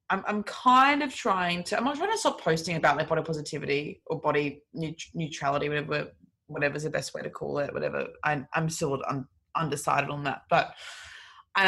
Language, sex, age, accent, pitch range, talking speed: English, female, 20-39, Australian, 155-200 Hz, 195 wpm